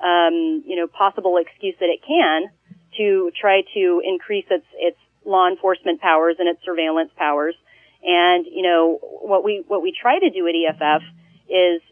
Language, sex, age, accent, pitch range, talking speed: English, female, 30-49, American, 170-195 Hz, 170 wpm